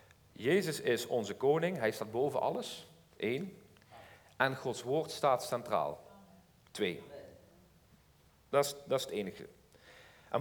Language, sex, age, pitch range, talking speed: Dutch, male, 50-69, 105-140 Hz, 125 wpm